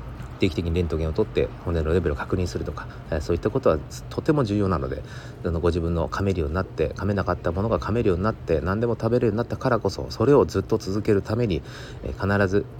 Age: 40-59